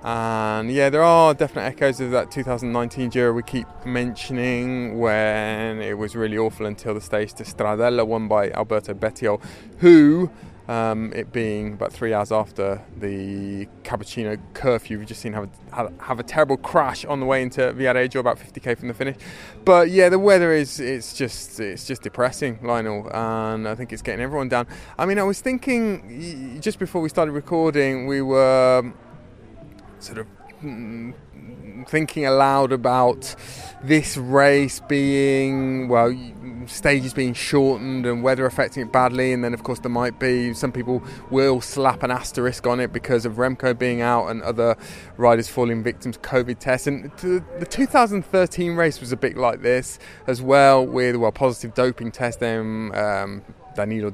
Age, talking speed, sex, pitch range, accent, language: 20-39, 165 wpm, male, 115-135 Hz, British, English